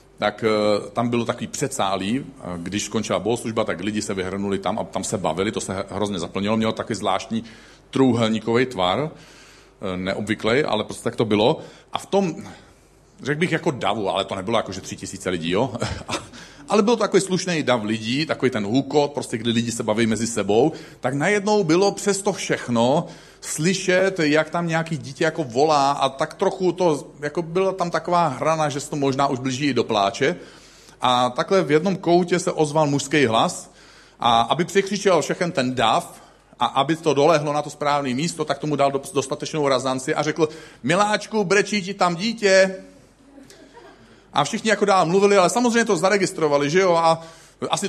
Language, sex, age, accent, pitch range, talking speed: Czech, male, 40-59, native, 120-190 Hz, 175 wpm